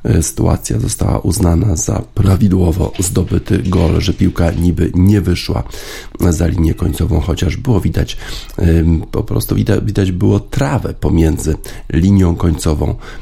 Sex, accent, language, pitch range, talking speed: male, native, Polish, 85-105 Hz, 120 wpm